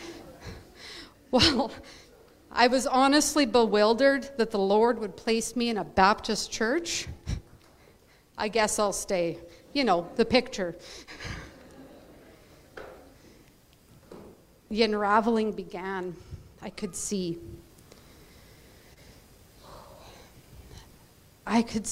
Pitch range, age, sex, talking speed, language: 190-240 Hz, 50-69, female, 85 wpm, English